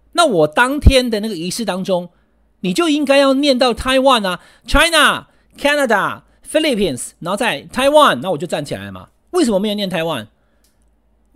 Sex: male